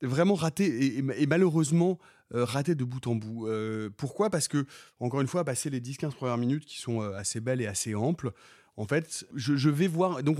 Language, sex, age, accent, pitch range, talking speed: French, male, 30-49, French, 115-150 Hz, 225 wpm